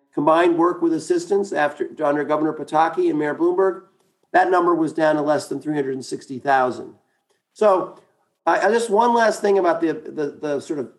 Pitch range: 155-220 Hz